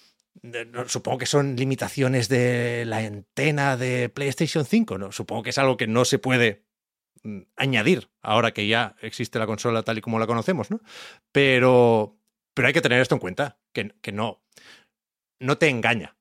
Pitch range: 105-140 Hz